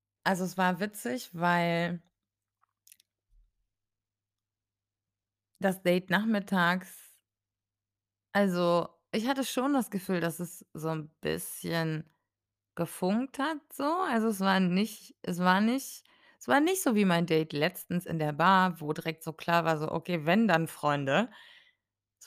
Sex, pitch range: female, 140-200 Hz